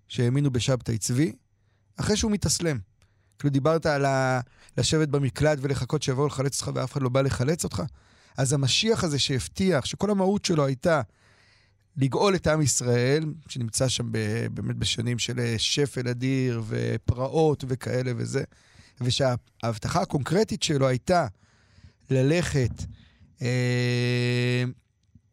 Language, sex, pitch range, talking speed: Hebrew, male, 120-155 Hz, 120 wpm